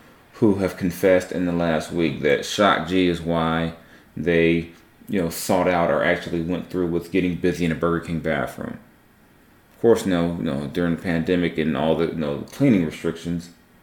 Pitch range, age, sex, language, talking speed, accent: 85-95 Hz, 30-49, male, English, 195 wpm, American